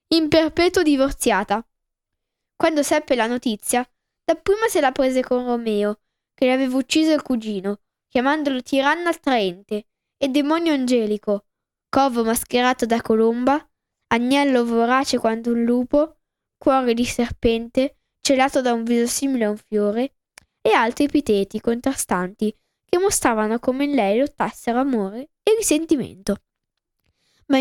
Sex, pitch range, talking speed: female, 225-280 Hz, 130 wpm